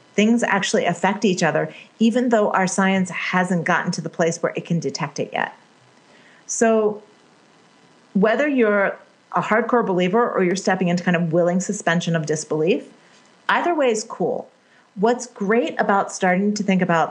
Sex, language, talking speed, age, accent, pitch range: female, English, 165 wpm, 40-59, American, 170-220 Hz